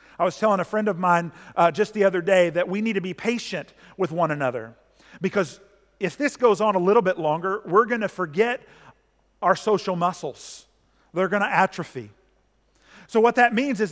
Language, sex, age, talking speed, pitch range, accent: English, male, 40-59, 190 wpm, 170-225 Hz, American